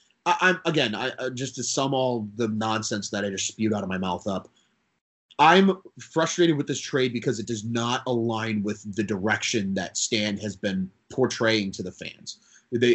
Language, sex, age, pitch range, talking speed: English, male, 30-49, 110-165 Hz, 190 wpm